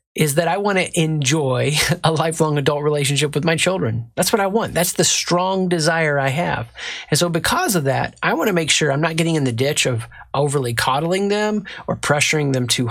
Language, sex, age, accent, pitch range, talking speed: English, male, 30-49, American, 130-170 Hz, 220 wpm